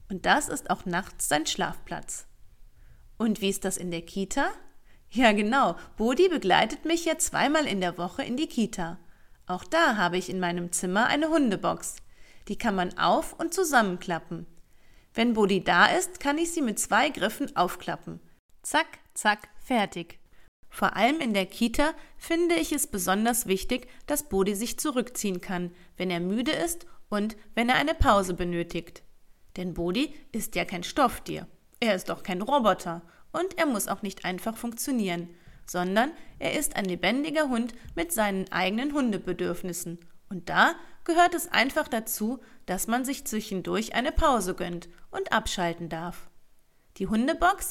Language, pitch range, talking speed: German, 180-285 Hz, 160 wpm